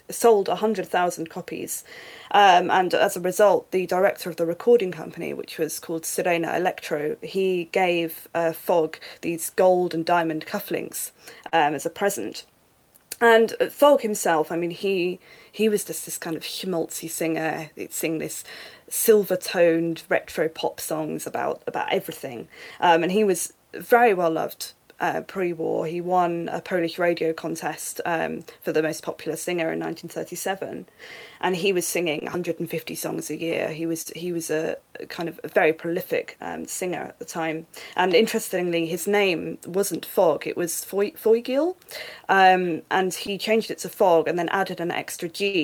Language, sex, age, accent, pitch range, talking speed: English, female, 20-39, British, 165-205 Hz, 165 wpm